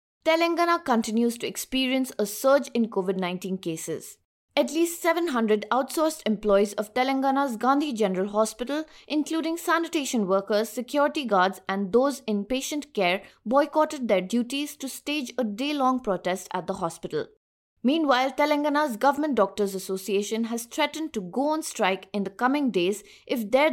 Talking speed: 145 wpm